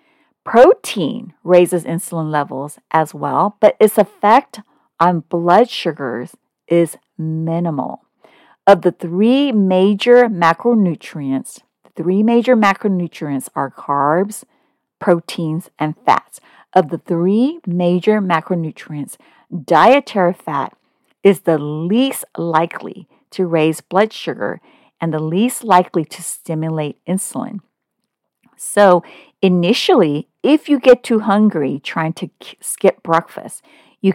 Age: 50-69